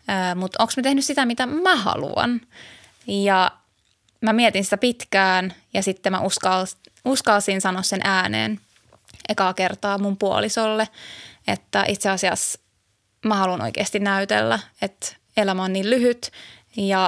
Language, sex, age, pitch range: Finnish, female, 20-39, 190-215 Hz